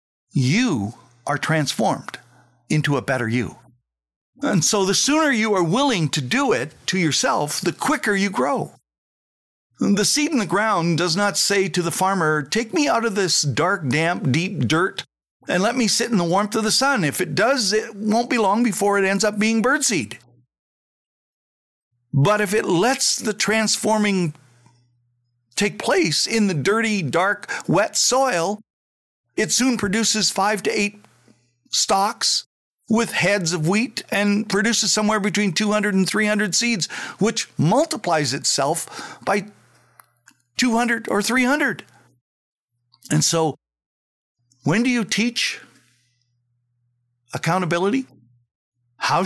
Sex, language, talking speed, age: male, English, 140 wpm, 50-69